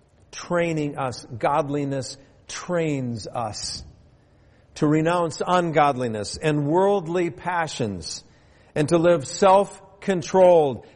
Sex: male